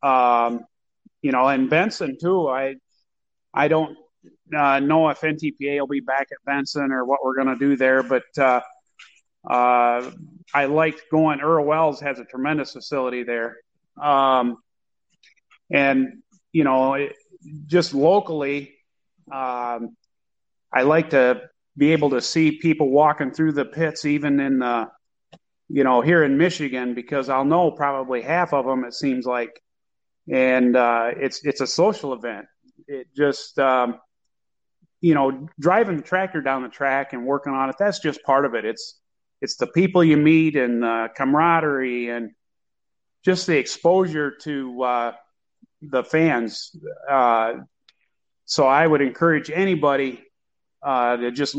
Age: 30-49